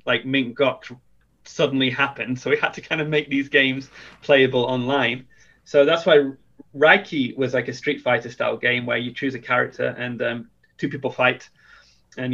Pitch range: 125-145 Hz